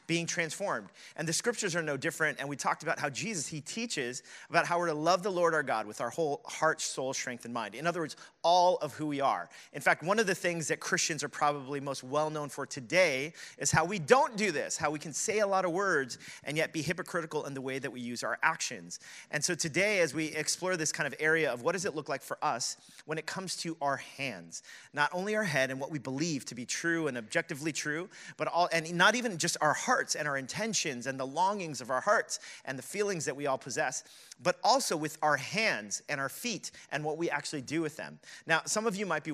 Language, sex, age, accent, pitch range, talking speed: English, male, 30-49, American, 135-170 Hz, 250 wpm